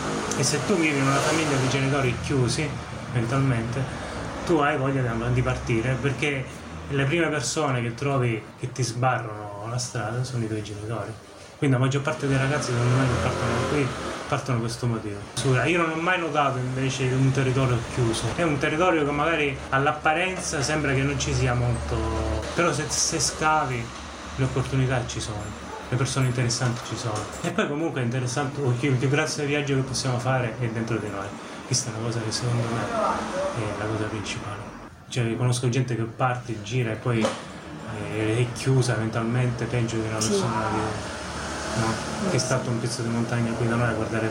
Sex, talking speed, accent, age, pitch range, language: male, 185 wpm, native, 20-39, 110-135 Hz, Italian